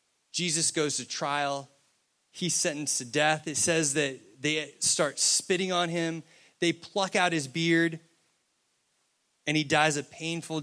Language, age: English, 30-49